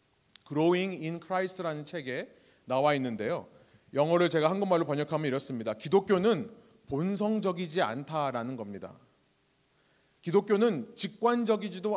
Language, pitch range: Korean, 160-230 Hz